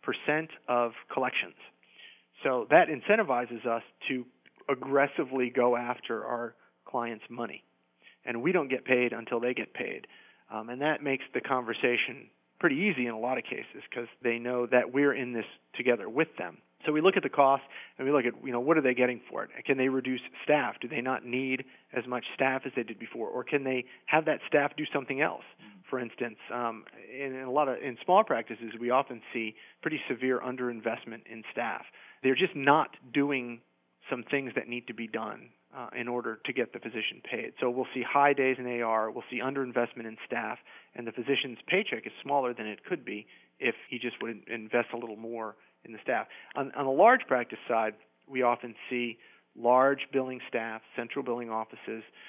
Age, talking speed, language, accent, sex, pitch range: 40-59, 200 wpm, English, American, male, 115-135 Hz